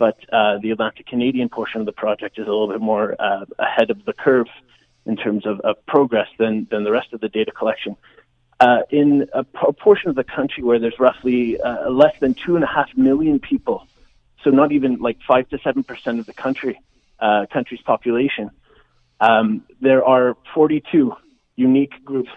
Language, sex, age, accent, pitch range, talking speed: English, male, 30-49, American, 115-140 Hz, 180 wpm